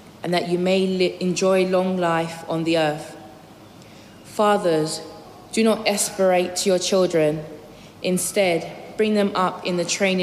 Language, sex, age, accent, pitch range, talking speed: English, female, 20-39, British, 170-200 Hz, 145 wpm